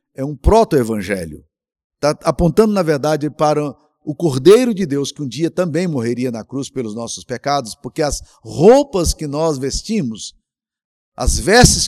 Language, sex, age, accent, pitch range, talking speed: Portuguese, male, 50-69, Brazilian, 120-170 Hz, 150 wpm